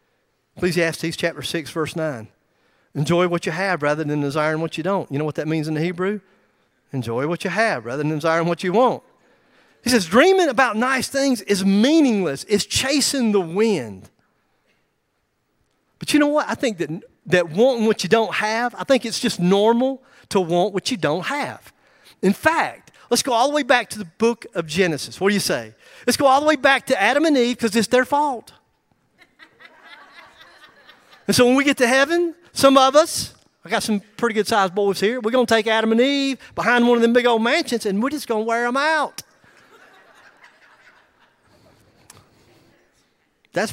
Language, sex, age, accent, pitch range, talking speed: English, male, 40-59, American, 175-255 Hz, 190 wpm